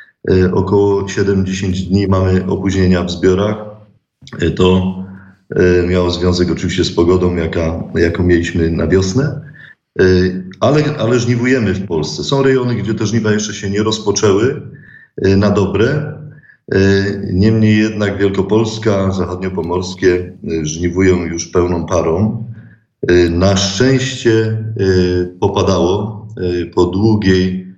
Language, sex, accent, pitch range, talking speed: Polish, male, native, 90-105 Hz, 100 wpm